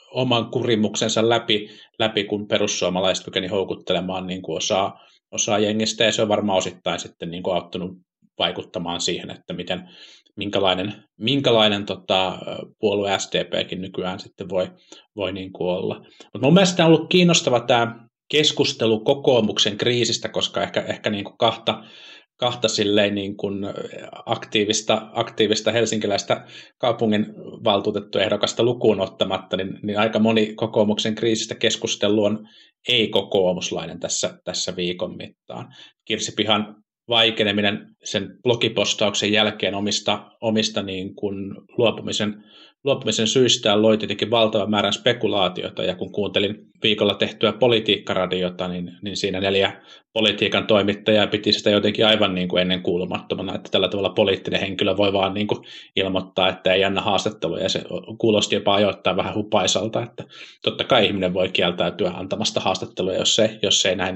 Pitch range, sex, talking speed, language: 100-110 Hz, male, 130 wpm, Finnish